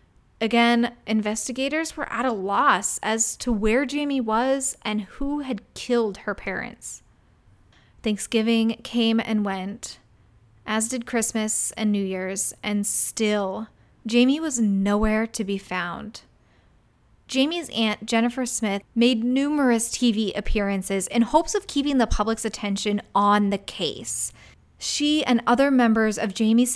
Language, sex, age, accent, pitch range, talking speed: English, female, 20-39, American, 205-255 Hz, 130 wpm